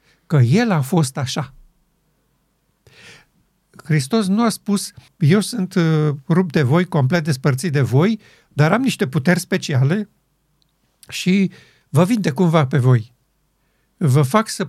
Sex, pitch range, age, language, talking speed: male, 145-185 Hz, 50-69, Romanian, 135 wpm